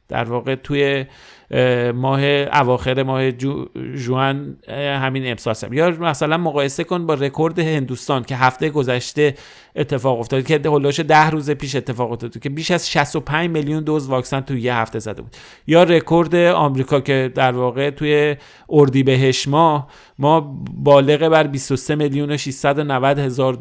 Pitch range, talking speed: 130-150 Hz, 150 wpm